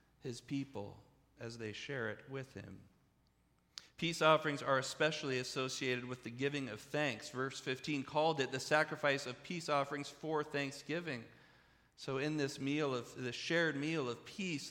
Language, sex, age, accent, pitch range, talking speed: English, male, 40-59, American, 115-150 Hz, 160 wpm